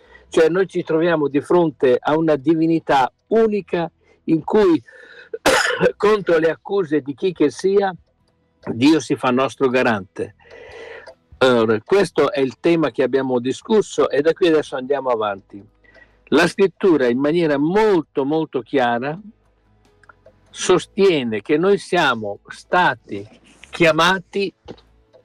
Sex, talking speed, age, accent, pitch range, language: male, 120 wpm, 60-79, native, 145-220 Hz, Italian